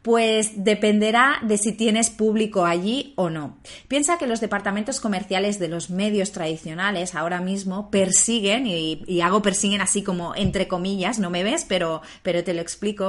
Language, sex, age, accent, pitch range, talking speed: Spanish, female, 30-49, Spanish, 185-225 Hz, 170 wpm